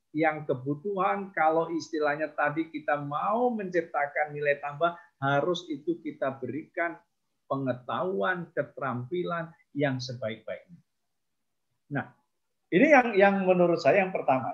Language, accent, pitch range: Indonesian, native, 145-195 Hz